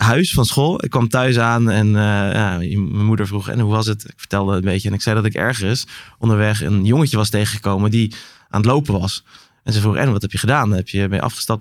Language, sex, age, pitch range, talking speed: Dutch, male, 20-39, 100-120 Hz, 255 wpm